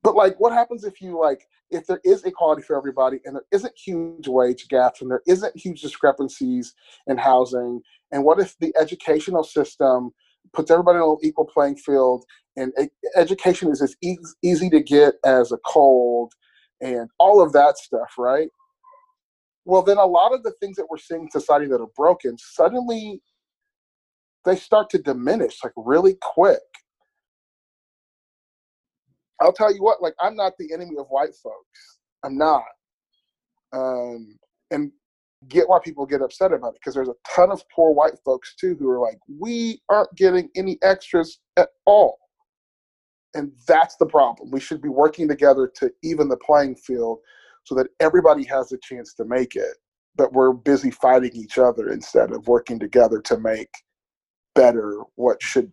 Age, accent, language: 30-49, American, English